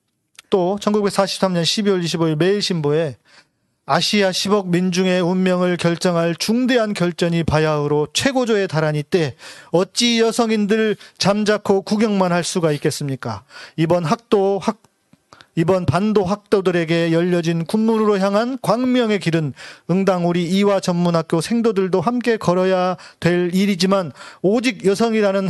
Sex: male